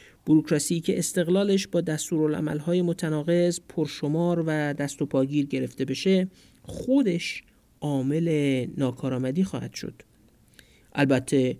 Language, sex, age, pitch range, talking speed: Persian, male, 50-69, 140-170 Hz, 90 wpm